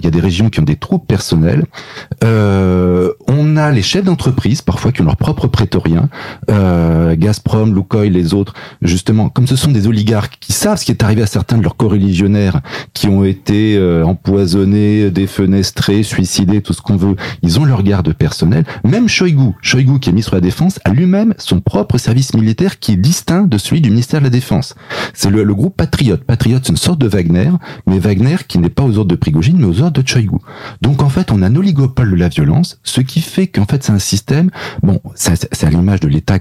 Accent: French